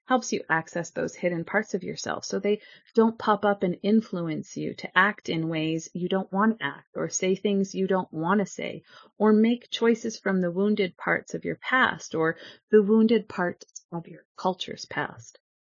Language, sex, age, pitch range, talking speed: English, female, 30-49, 170-215 Hz, 195 wpm